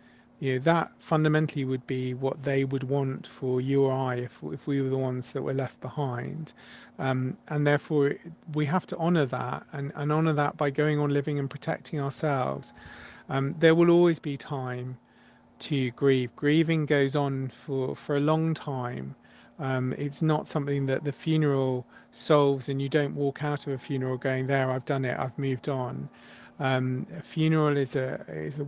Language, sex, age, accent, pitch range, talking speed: English, male, 40-59, British, 130-150 Hz, 185 wpm